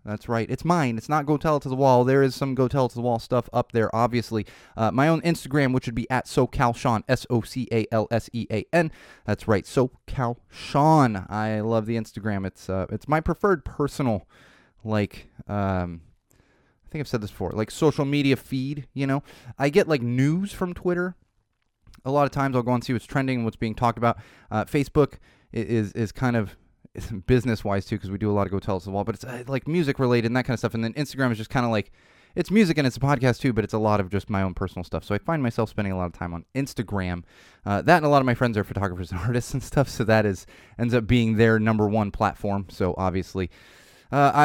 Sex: male